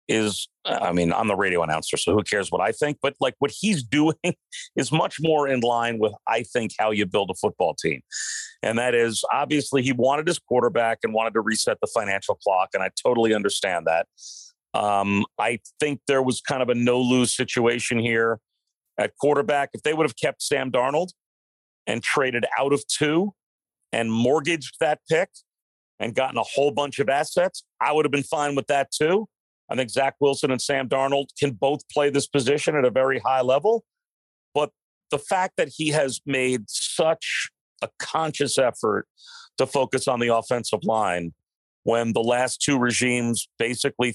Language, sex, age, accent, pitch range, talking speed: English, male, 40-59, American, 115-145 Hz, 185 wpm